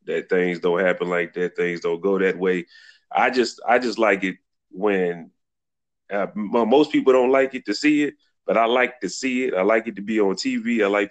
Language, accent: English, American